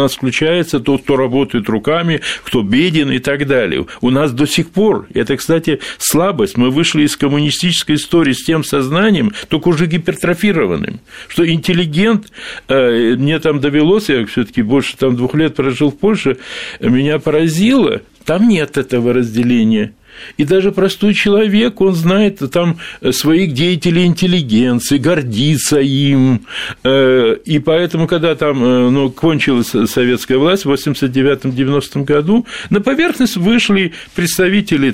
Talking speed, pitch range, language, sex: 135 wpm, 135-185 Hz, Russian, male